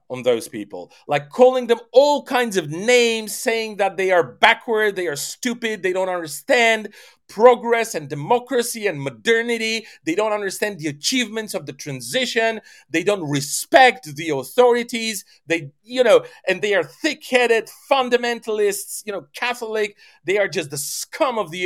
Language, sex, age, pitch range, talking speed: English, male, 40-59, 170-245 Hz, 160 wpm